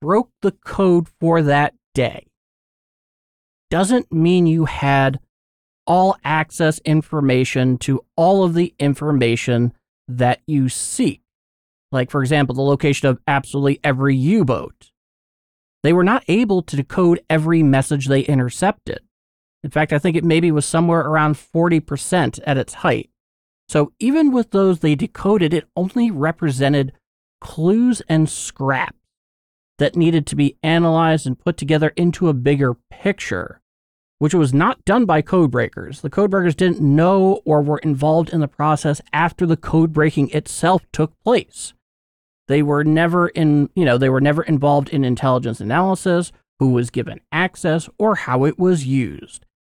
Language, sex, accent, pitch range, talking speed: English, male, American, 135-170 Hz, 145 wpm